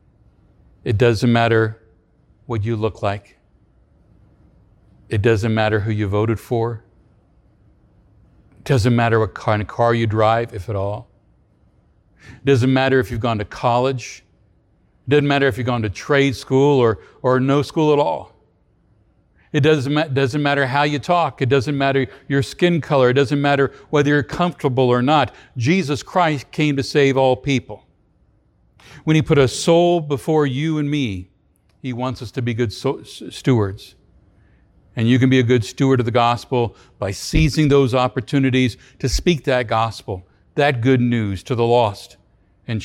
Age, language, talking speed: 60-79, English, 165 wpm